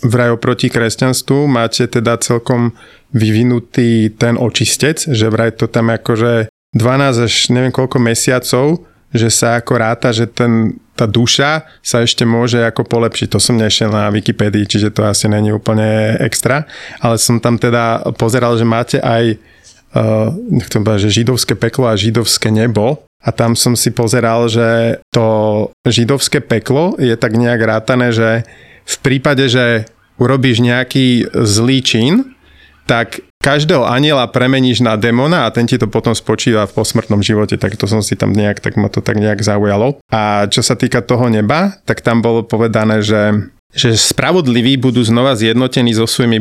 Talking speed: 160 wpm